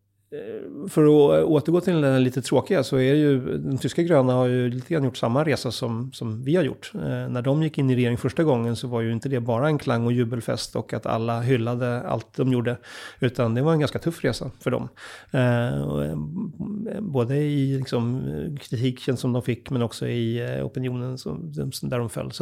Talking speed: 205 wpm